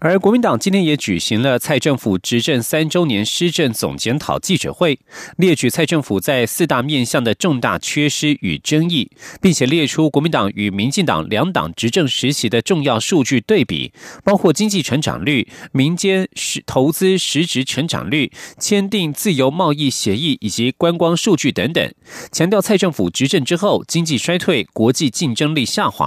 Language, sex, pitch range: German, male, 125-185 Hz